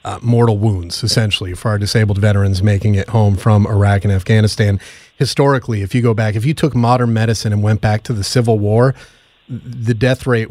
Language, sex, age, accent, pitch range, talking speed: English, male, 30-49, American, 110-140 Hz, 200 wpm